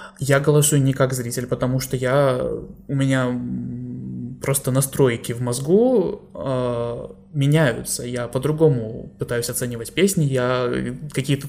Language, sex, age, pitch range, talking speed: Russian, male, 20-39, 125-145 Hz, 115 wpm